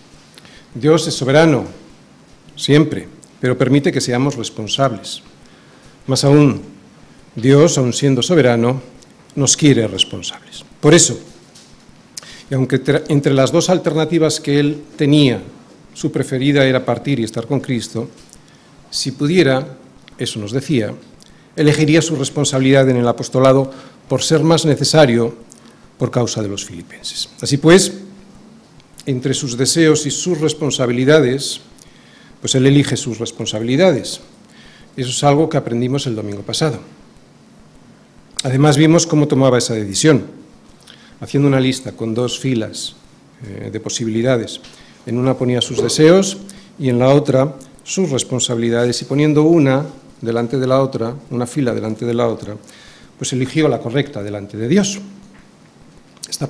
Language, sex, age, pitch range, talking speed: Spanish, male, 50-69, 120-150 Hz, 135 wpm